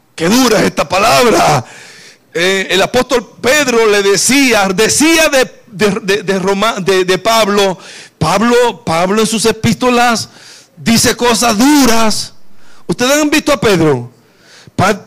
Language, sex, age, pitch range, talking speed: Spanish, male, 50-69, 205-275 Hz, 135 wpm